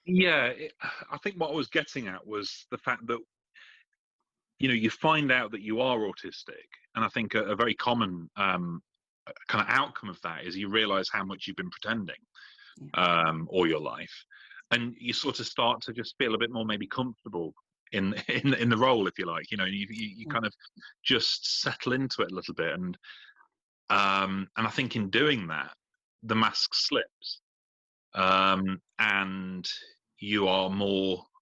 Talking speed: 185 wpm